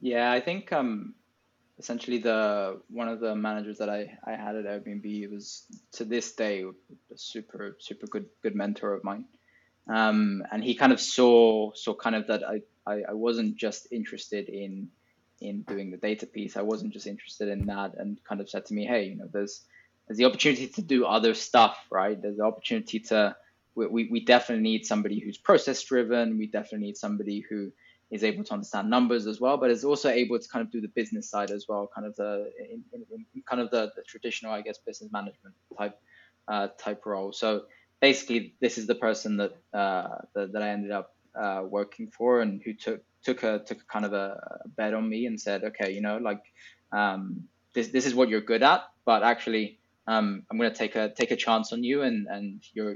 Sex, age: male, 20-39